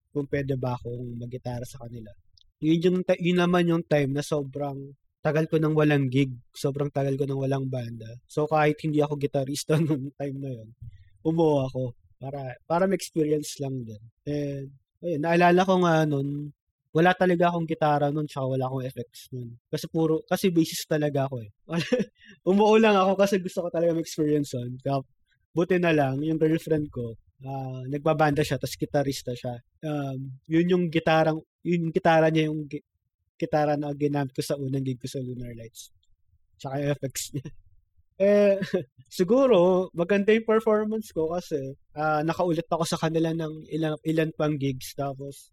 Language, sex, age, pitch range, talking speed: English, male, 20-39, 130-160 Hz, 165 wpm